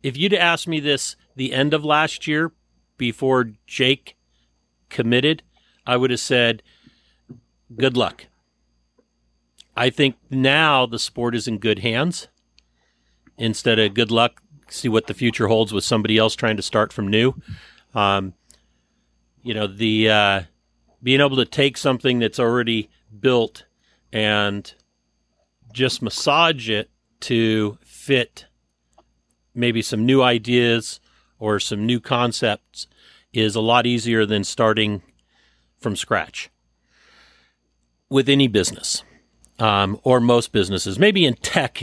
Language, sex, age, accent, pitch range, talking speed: English, male, 50-69, American, 95-125 Hz, 130 wpm